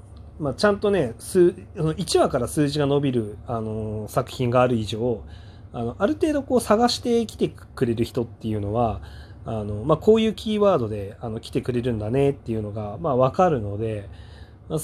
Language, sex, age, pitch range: Japanese, male, 30-49, 105-155 Hz